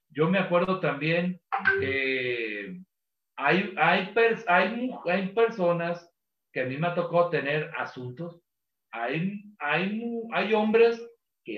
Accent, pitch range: Mexican, 145-195 Hz